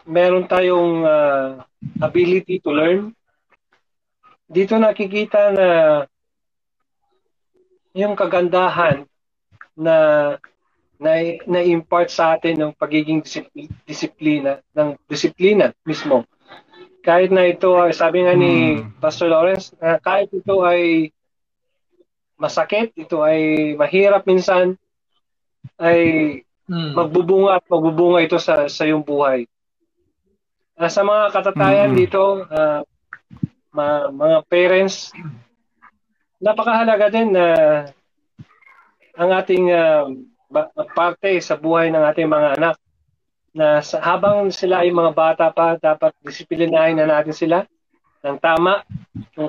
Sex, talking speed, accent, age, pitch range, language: male, 110 wpm, native, 20-39, 155-200 Hz, Filipino